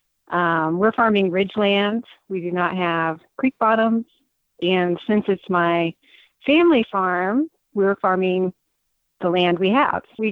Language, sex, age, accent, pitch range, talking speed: English, female, 30-49, American, 180-220 Hz, 135 wpm